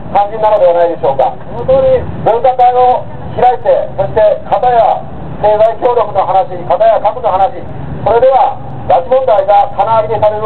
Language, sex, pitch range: Japanese, male, 195-260 Hz